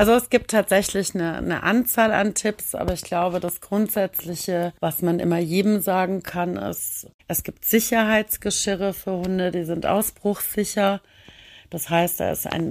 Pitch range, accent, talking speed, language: 170-205 Hz, German, 160 wpm, German